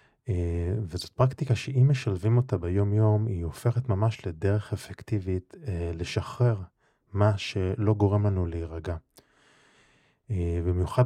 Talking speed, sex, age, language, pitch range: 120 wpm, male, 20-39, Hebrew, 90-110 Hz